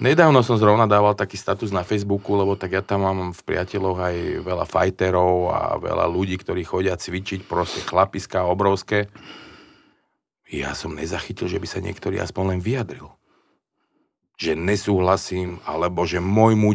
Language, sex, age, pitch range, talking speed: Slovak, male, 40-59, 95-110 Hz, 150 wpm